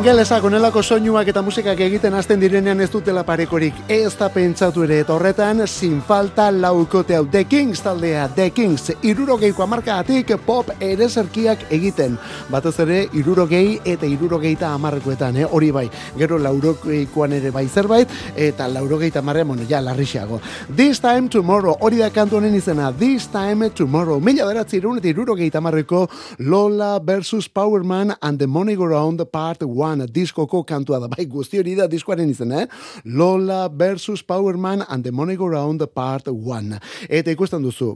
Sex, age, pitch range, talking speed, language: male, 30-49, 145-195 Hz, 165 wpm, Spanish